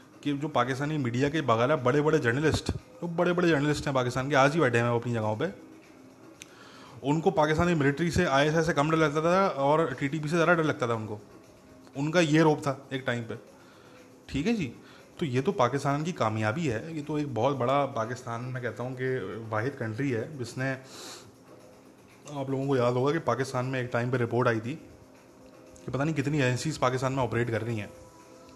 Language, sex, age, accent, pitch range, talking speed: English, male, 20-39, Indian, 125-160 Hz, 120 wpm